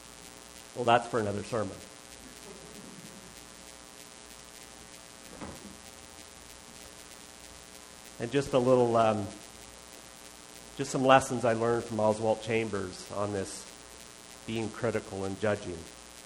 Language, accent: English, American